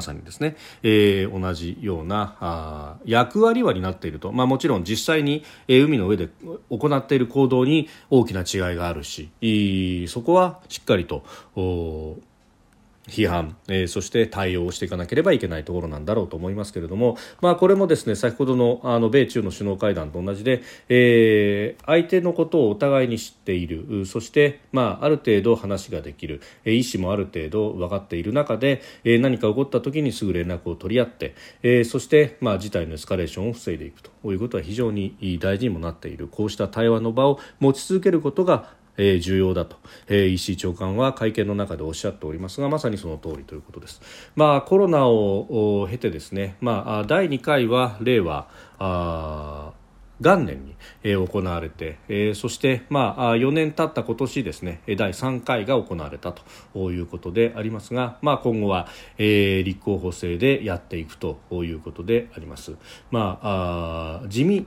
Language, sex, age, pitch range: Japanese, male, 40-59, 90-125 Hz